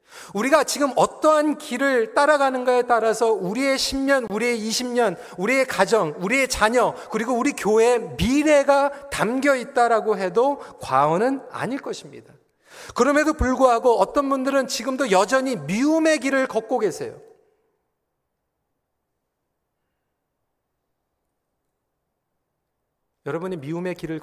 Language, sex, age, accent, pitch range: Korean, male, 40-59, native, 215-305 Hz